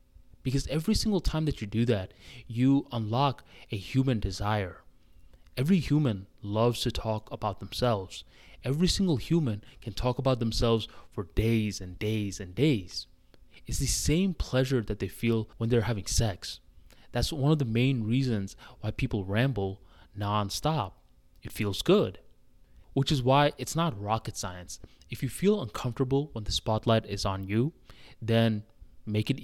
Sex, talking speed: male, 155 wpm